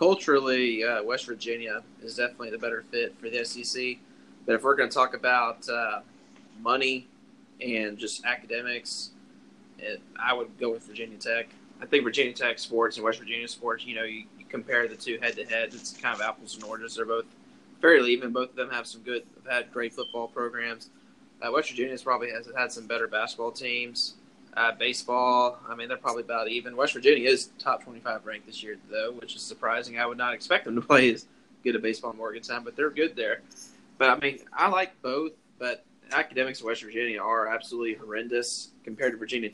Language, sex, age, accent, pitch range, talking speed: English, male, 20-39, American, 115-125 Hz, 200 wpm